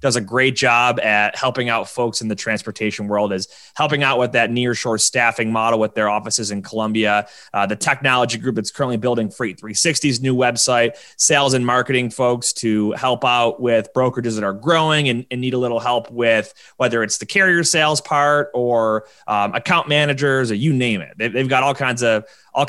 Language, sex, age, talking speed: English, male, 20-39, 200 wpm